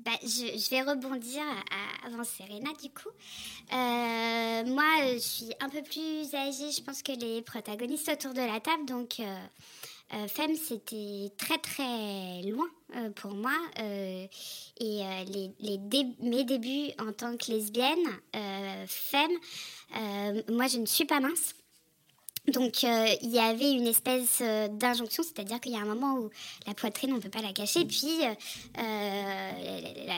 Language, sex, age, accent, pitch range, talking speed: French, male, 20-39, French, 215-275 Hz, 165 wpm